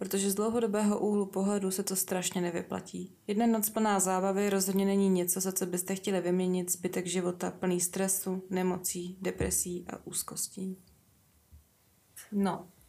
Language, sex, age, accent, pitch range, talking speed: Czech, female, 20-39, native, 180-200 Hz, 140 wpm